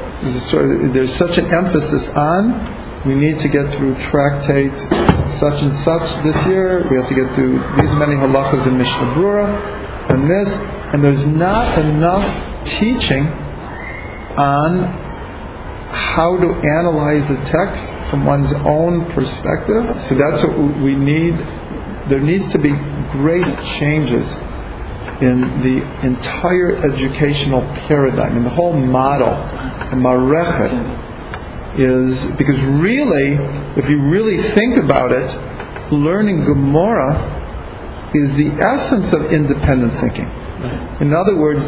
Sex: male